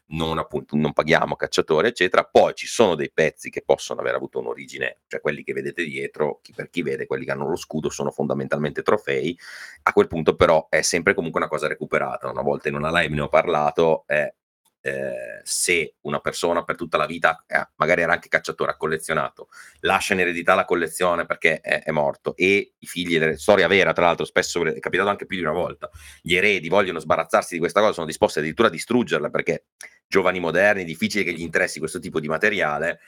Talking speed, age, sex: 205 wpm, 30-49, male